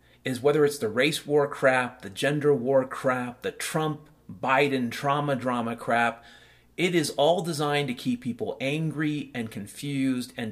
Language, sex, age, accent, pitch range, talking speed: English, male, 40-59, American, 115-150 Hz, 155 wpm